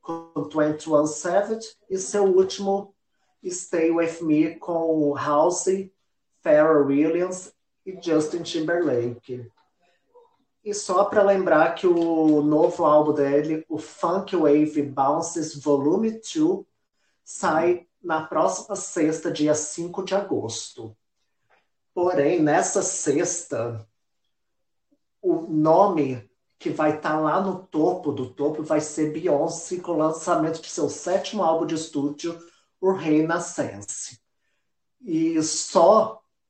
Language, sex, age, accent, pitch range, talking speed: Portuguese, male, 30-49, Brazilian, 150-180 Hz, 115 wpm